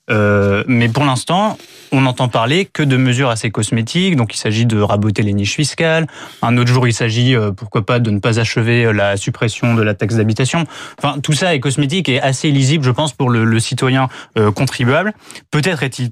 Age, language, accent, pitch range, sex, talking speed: 20-39, French, French, 115-135 Hz, male, 210 wpm